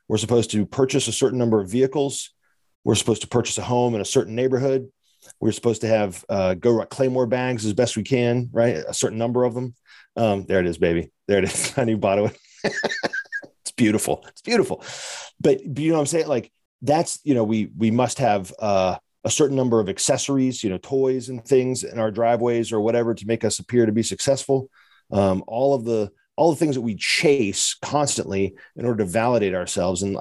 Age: 40-59